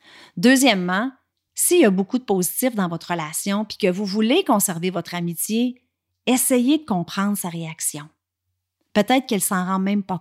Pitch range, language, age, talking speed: 180-230 Hz, French, 40-59, 170 wpm